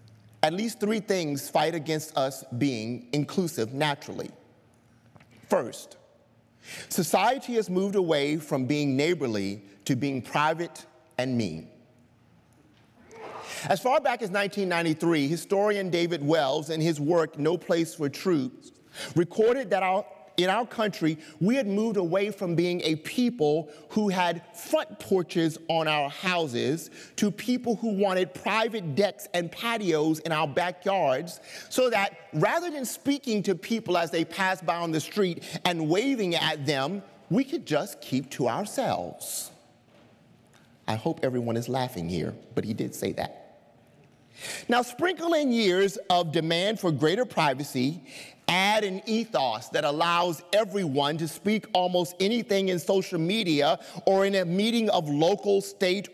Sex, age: male, 30-49